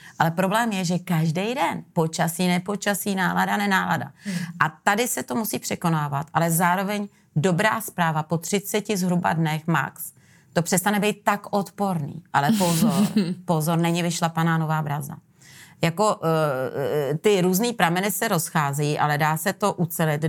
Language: Czech